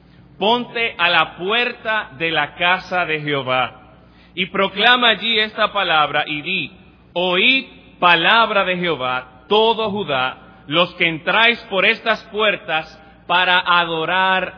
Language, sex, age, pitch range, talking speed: English, male, 30-49, 150-210 Hz, 125 wpm